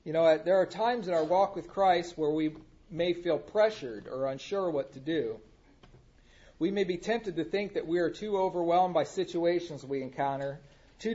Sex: male